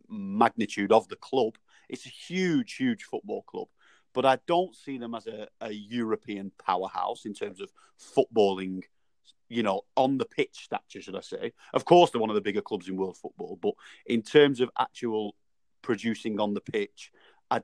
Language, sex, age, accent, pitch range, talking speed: English, male, 30-49, British, 105-145 Hz, 185 wpm